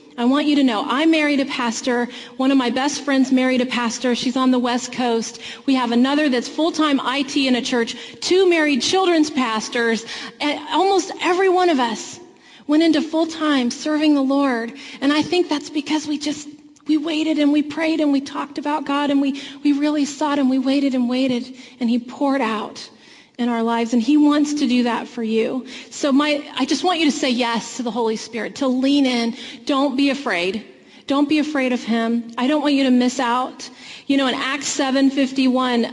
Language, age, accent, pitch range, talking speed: English, 30-49, American, 240-290 Hz, 210 wpm